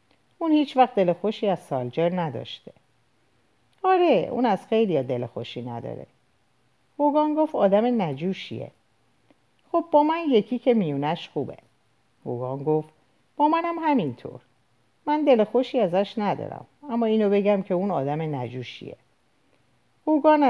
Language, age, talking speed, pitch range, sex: Persian, 50-69, 130 wpm, 150-225 Hz, female